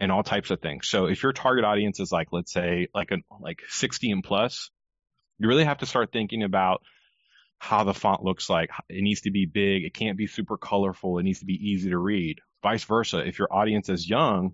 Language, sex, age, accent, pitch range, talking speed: English, male, 30-49, American, 95-115 Hz, 230 wpm